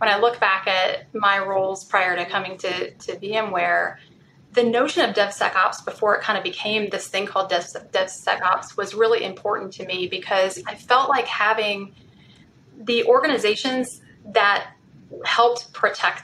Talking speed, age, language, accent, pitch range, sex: 150 wpm, 20-39, English, American, 185-235 Hz, female